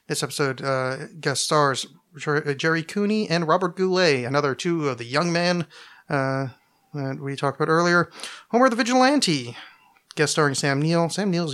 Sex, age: male, 30-49